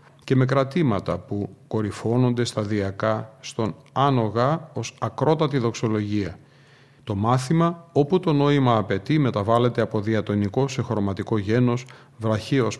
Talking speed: 115 wpm